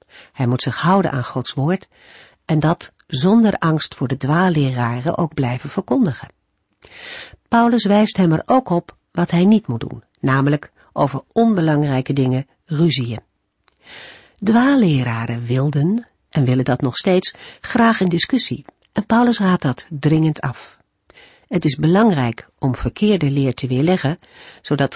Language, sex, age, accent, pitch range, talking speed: Dutch, female, 50-69, Dutch, 135-200 Hz, 140 wpm